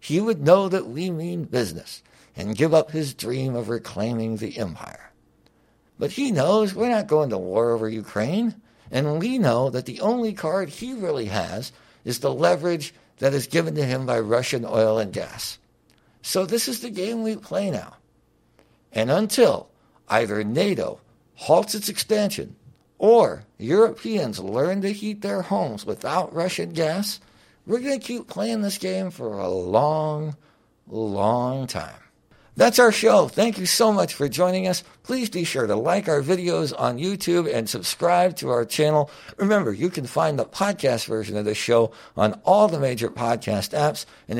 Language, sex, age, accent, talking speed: English, male, 60-79, American, 170 wpm